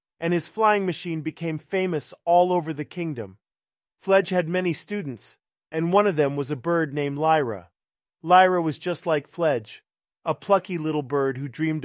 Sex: male